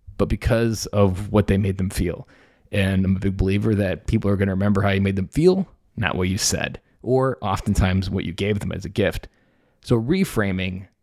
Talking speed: 210 wpm